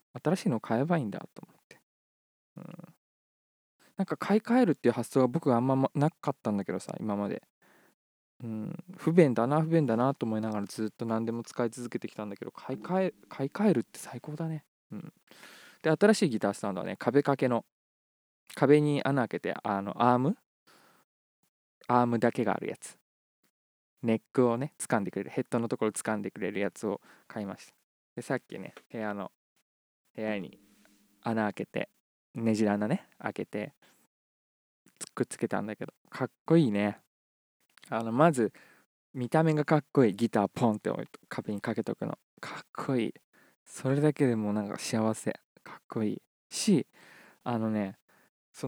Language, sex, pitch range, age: Japanese, male, 110-150 Hz, 20-39